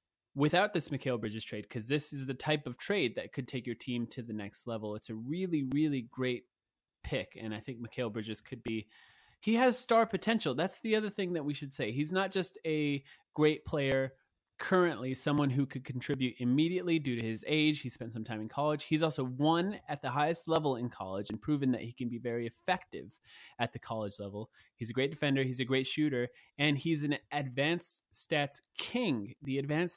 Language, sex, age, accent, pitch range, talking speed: English, male, 20-39, American, 120-155 Hz, 210 wpm